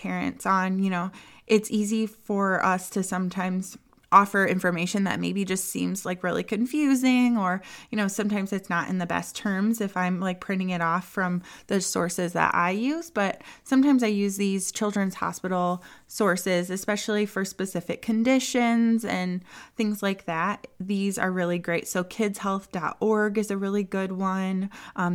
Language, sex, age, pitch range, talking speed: English, female, 20-39, 185-220 Hz, 165 wpm